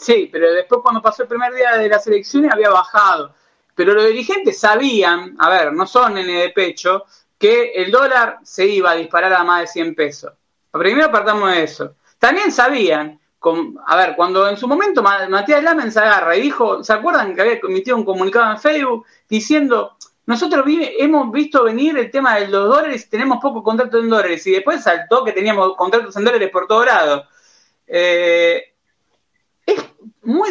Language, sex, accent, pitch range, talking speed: Spanish, male, Argentinian, 195-315 Hz, 185 wpm